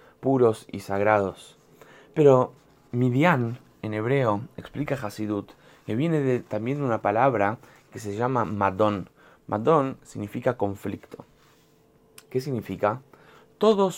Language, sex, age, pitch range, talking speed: Spanish, male, 30-49, 105-135 Hz, 110 wpm